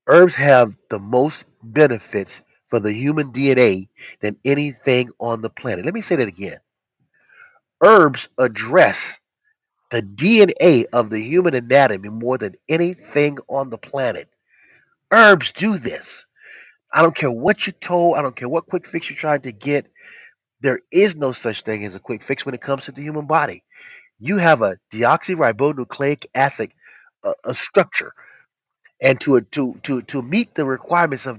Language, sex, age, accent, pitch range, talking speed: English, male, 30-49, American, 130-175 Hz, 160 wpm